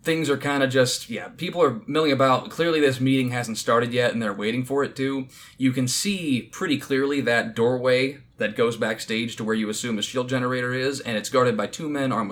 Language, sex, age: English, male, 20-39